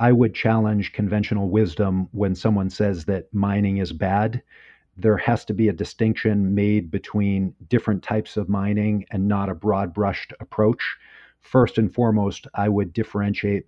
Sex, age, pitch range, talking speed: male, 40-59, 100-110 Hz, 160 wpm